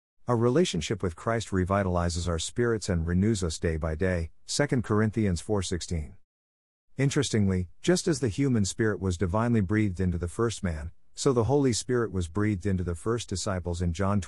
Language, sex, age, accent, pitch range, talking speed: English, male, 50-69, American, 90-120 Hz, 170 wpm